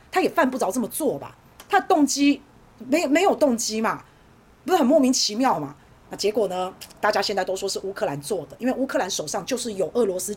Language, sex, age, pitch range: Chinese, female, 30-49, 200-265 Hz